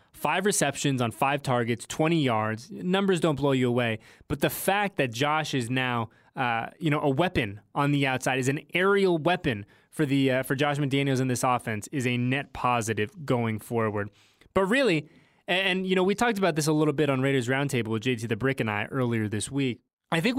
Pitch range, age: 130-180 Hz, 20-39